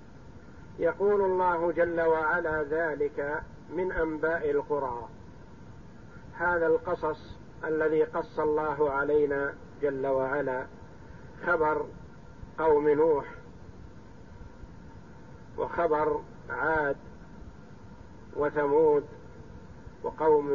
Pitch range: 155-215 Hz